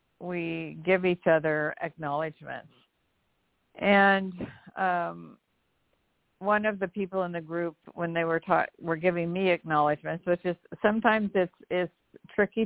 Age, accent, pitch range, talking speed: 50-69, American, 155-175 Hz, 135 wpm